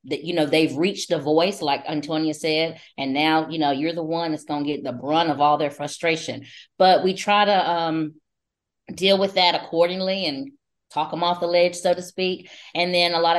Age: 20-39